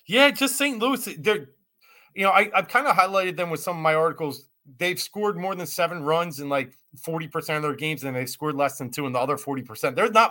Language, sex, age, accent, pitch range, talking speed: English, male, 30-49, American, 140-175 Hz, 245 wpm